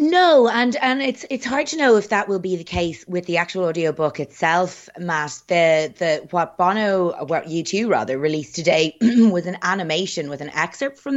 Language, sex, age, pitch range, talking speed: English, female, 20-39, 150-205 Hz, 200 wpm